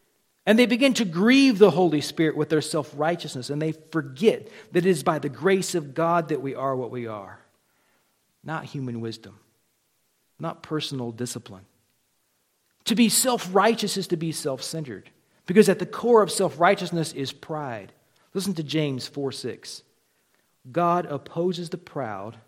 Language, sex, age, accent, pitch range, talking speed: English, male, 50-69, American, 120-170 Hz, 165 wpm